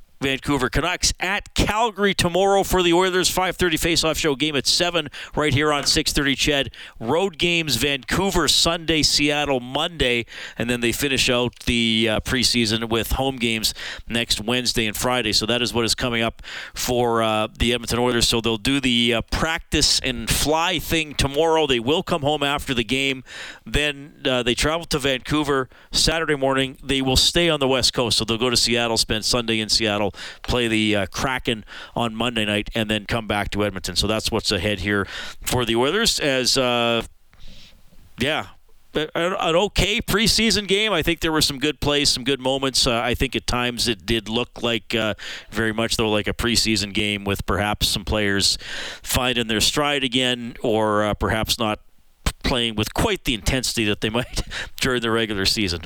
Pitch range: 110-145 Hz